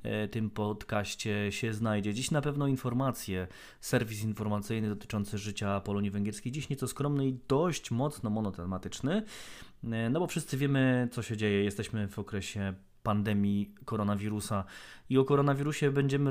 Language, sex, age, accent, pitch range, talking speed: Polish, male, 20-39, native, 100-125 Hz, 135 wpm